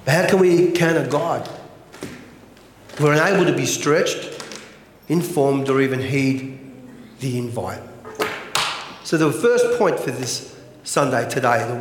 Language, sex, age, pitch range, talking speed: English, male, 40-59, 125-180 Hz, 130 wpm